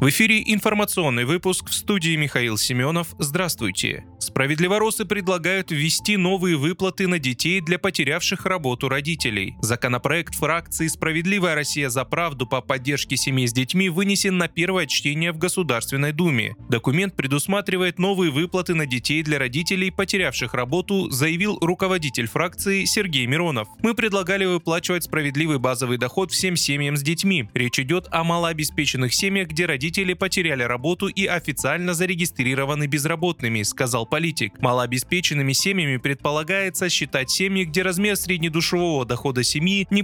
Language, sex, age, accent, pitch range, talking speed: Russian, male, 20-39, native, 135-185 Hz, 135 wpm